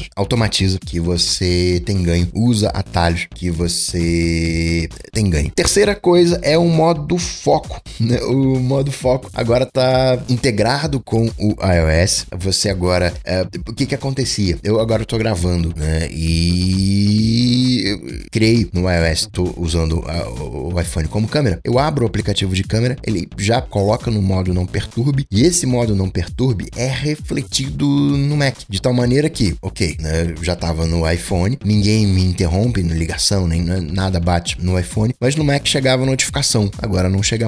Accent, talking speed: Brazilian, 160 wpm